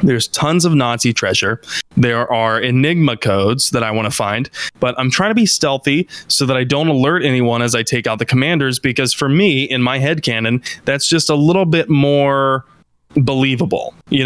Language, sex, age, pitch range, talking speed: English, male, 20-39, 120-150 Hz, 195 wpm